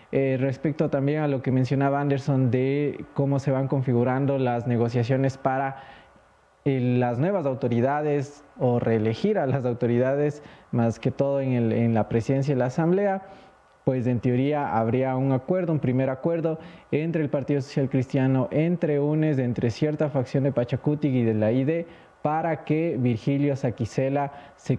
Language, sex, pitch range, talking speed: English, male, 125-150 Hz, 160 wpm